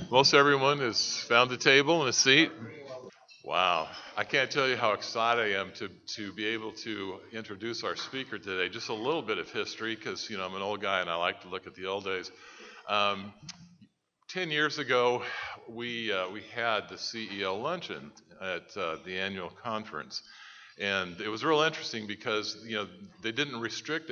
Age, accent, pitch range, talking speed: 50-69, American, 105-140 Hz, 190 wpm